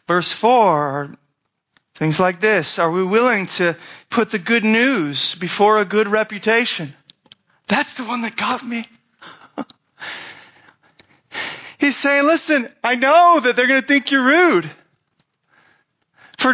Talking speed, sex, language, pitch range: 130 wpm, male, English, 215-280 Hz